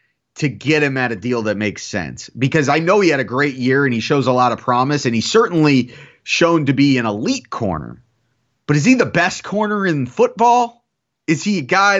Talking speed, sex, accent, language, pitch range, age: 225 wpm, male, American, English, 125-175 Hz, 30-49